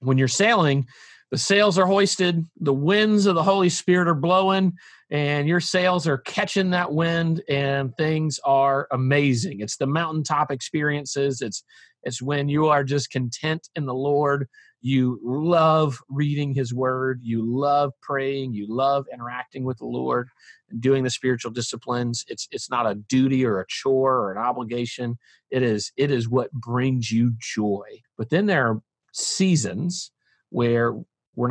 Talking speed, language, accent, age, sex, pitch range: 160 wpm, English, American, 40-59, male, 120-150 Hz